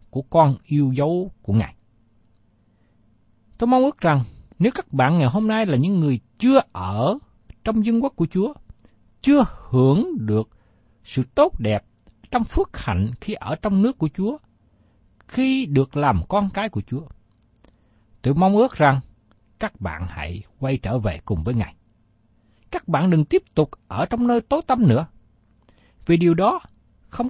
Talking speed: 165 wpm